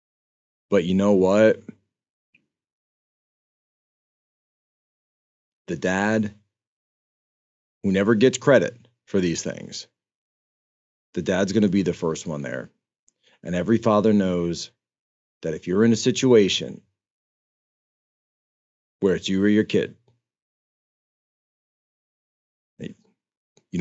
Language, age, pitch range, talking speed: English, 40-59, 85-105 Hz, 95 wpm